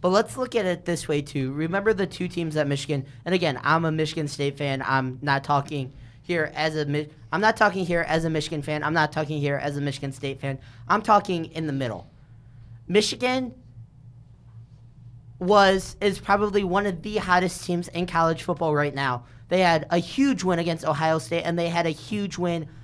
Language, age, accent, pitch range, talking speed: English, 20-39, American, 145-190 Hz, 200 wpm